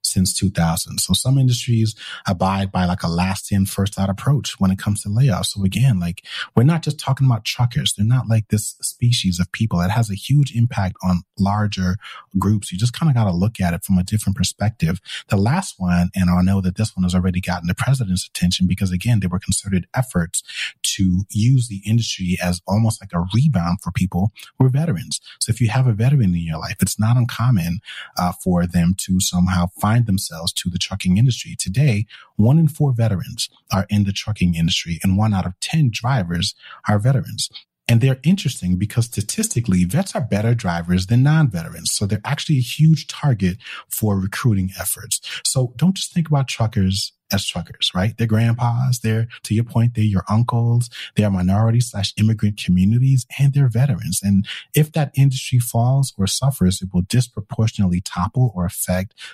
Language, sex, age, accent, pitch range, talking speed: English, male, 30-49, American, 95-125 Hz, 195 wpm